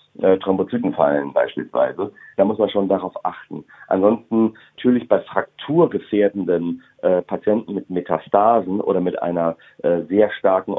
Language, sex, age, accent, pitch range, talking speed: German, male, 40-59, German, 100-125 Hz, 135 wpm